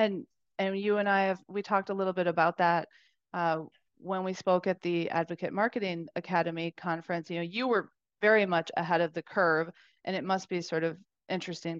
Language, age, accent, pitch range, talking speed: English, 30-49, American, 170-200 Hz, 205 wpm